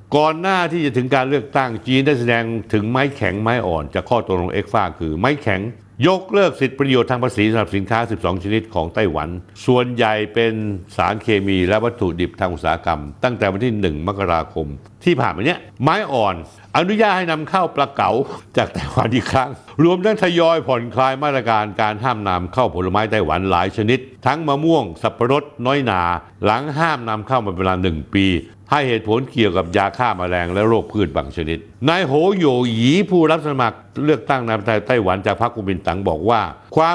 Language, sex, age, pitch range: Thai, male, 60-79, 100-140 Hz